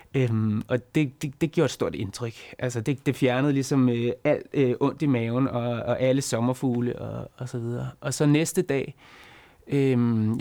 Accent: native